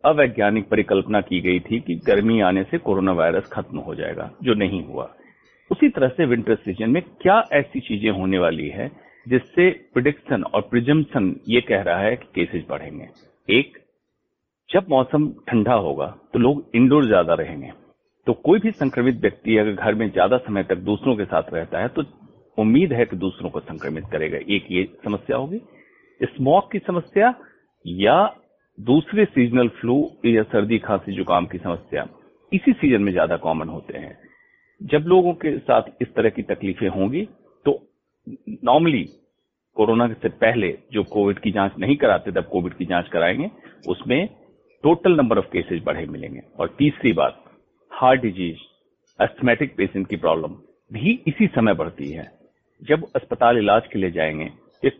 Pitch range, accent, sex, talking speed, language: 95-150 Hz, native, male, 165 wpm, Hindi